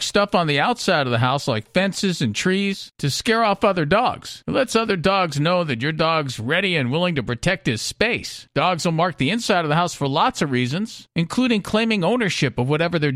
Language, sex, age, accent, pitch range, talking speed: English, male, 50-69, American, 155-215 Hz, 225 wpm